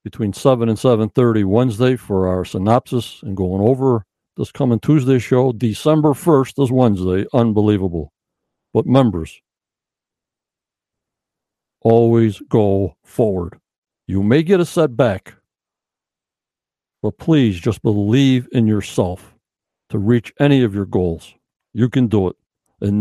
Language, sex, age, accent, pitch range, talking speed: English, male, 60-79, American, 105-135 Hz, 125 wpm